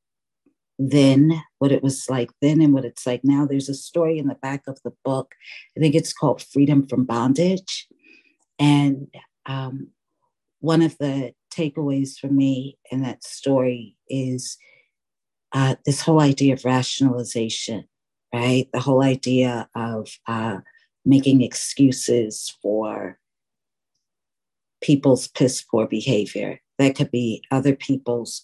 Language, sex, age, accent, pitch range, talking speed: English, female, 50-69, American, 125-140 Hz, 130 wpm